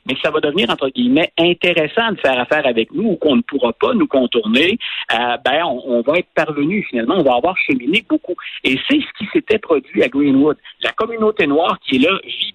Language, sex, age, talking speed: French, male, 60-79, 225 wpm